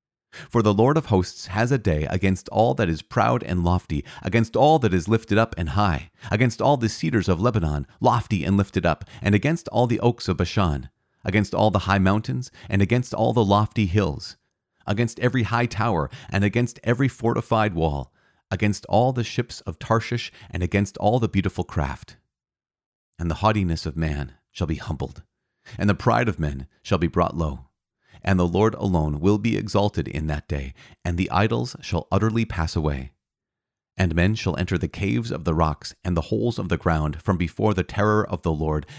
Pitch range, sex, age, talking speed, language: 85-110 Hz, male, 40-59, 195 wpm, English